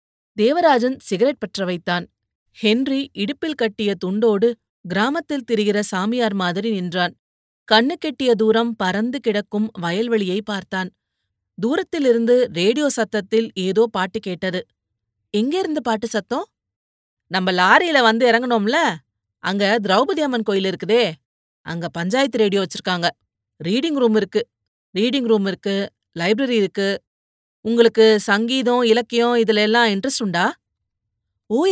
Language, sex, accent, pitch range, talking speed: Tamil, female, native, 185-240 Hz, 105 wpm